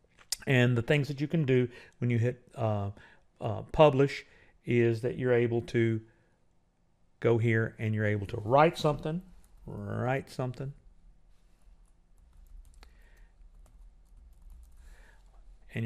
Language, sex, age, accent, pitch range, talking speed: English, male, 50-69, American, 110-130 Hz, 110 wpm